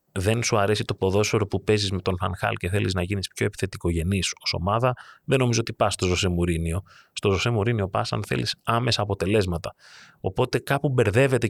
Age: 30-49